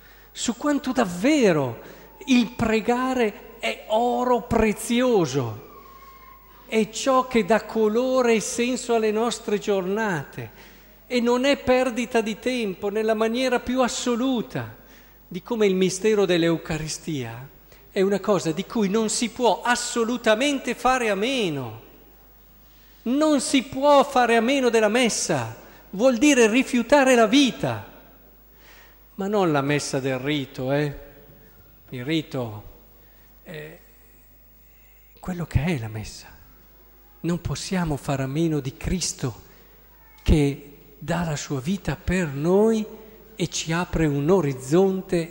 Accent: native